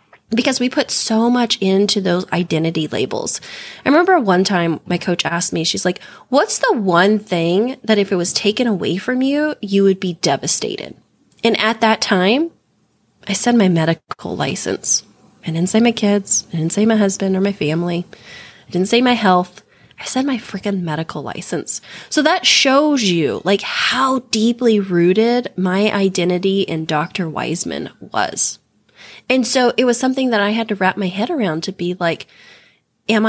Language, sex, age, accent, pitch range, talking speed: English, female, 20-39, American, 180-245 Hz, 180 wpm